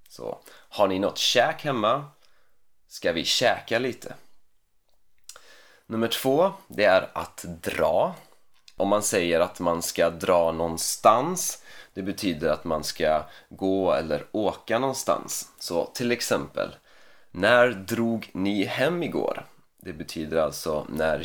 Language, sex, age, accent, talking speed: Swedish, male, 30-49, native, 125 wpm